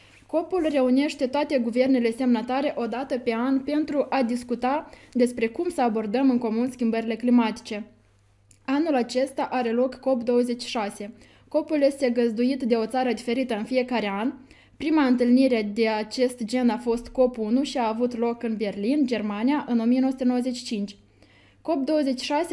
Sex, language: female, Romanian